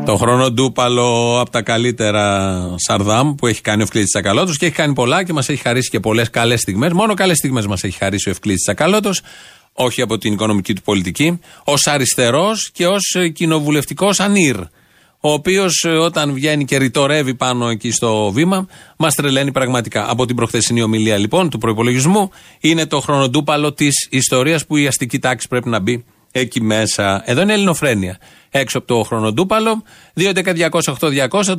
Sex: male